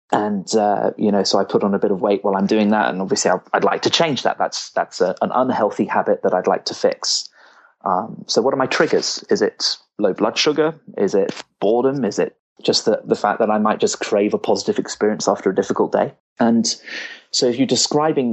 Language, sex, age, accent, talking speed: English, male, 30-49, British, 235 wpm